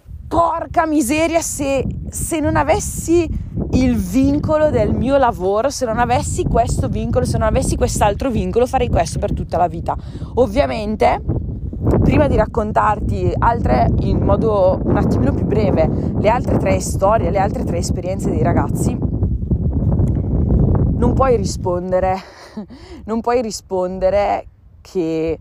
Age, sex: 20-39, female